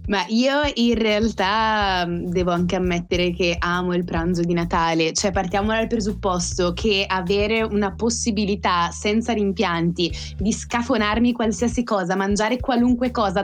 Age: 20-39